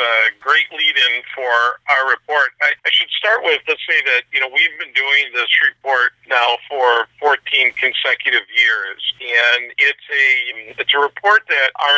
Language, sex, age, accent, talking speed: English, male, 50-69, American, 170 wpm